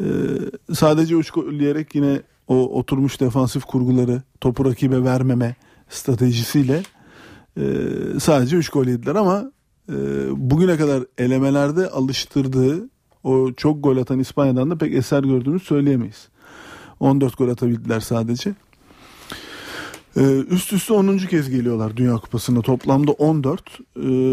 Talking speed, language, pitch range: 115 wpm, Turkish, 125-145 Hz